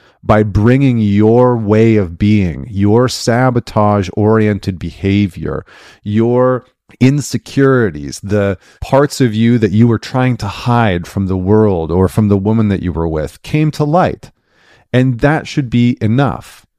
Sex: male